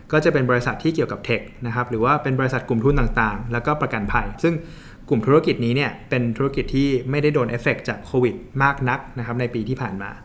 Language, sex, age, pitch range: Thai, male, 20-39, 120-155 Hz